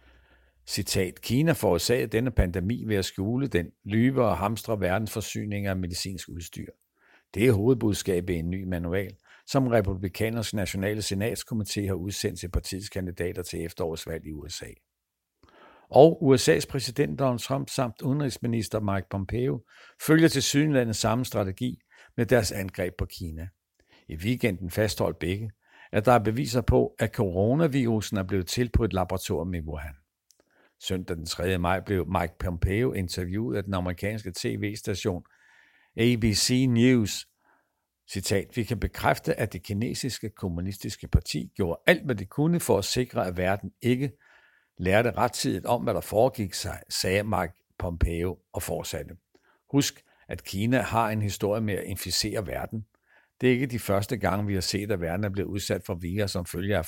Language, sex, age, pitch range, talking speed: Danish, male, 60-79, 90-120 Hz, 155 wpm